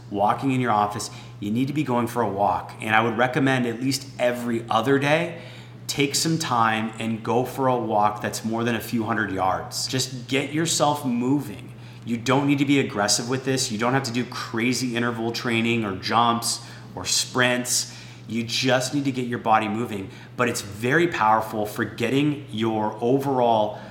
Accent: American